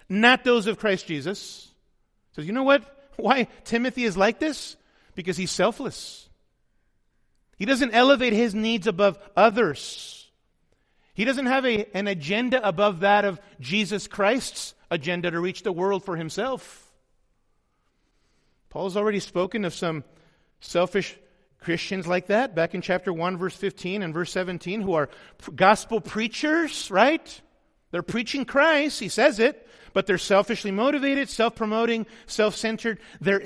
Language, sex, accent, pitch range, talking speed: English, male, American, 180-230 Hz, 140 wpm